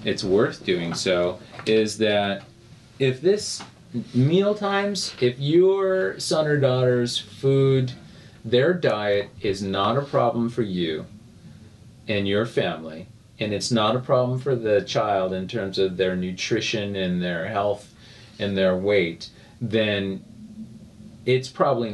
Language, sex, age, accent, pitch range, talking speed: English, male, 40-59, American, 95-125 Hz, 135 wpm